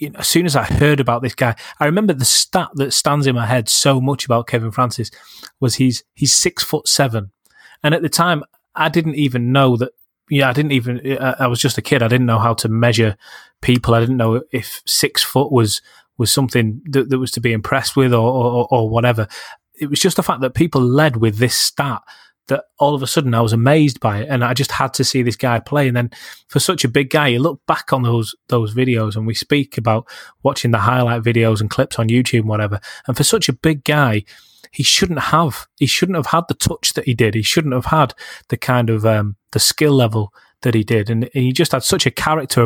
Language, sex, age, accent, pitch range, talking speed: English, male, 20-39, British, 115-140 Hz, 240 wpm